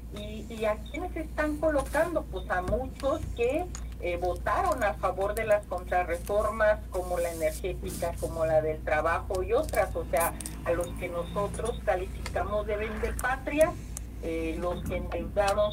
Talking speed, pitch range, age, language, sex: 155 wpm, 180-250 Hz, 50-69, Spanish, female